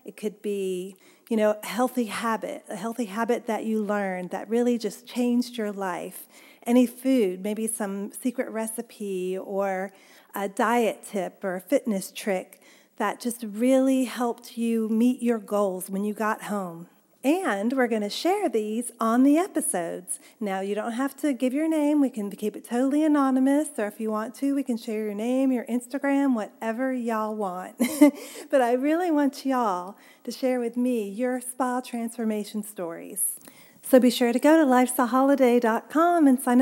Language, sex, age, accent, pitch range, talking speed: English, female, 40-59, American, 205-260 Hz, 175 wpm